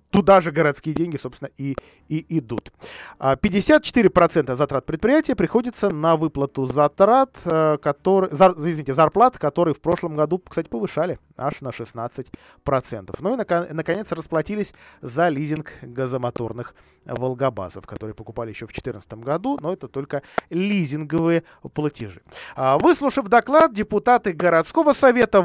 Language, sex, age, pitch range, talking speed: Russian, male, 20-39, 135-195 Hz, 115 wpm